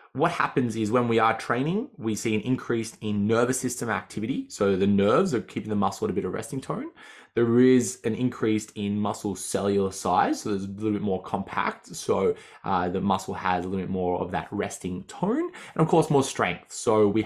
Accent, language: Australian, English